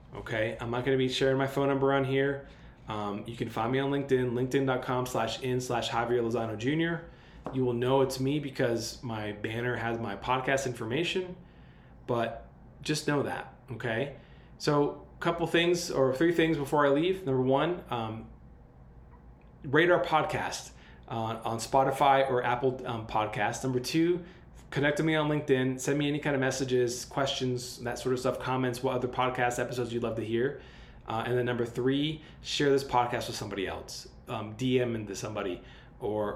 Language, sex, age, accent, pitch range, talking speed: English, male, 20-39, American, 120-140 Hz, 180 wpm